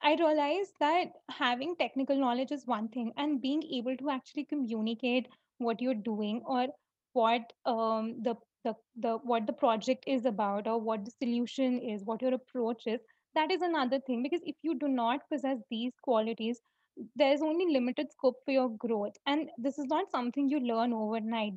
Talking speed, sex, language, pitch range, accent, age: 170 wpm, female, English, 230-280 Hz, Indian, 20-39